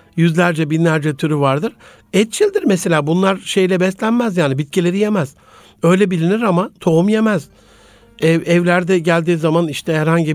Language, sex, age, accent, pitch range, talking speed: Turkish, male, 60-79, native, 155-195 Hz, 135 wpm